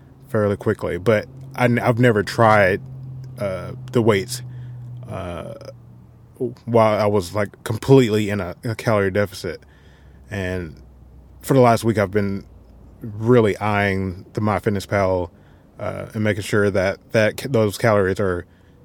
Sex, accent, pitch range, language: male, American, 100-120 Hz, English